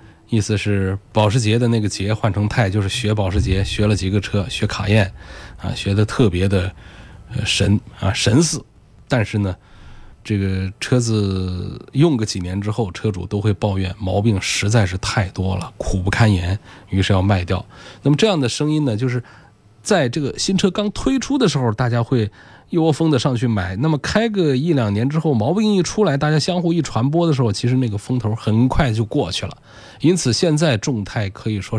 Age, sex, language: 20-39, male, Chinese